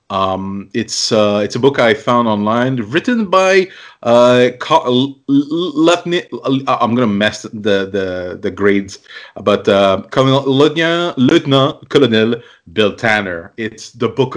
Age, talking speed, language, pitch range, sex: 30-49, 155 wpm, English, 100-130 Hz, male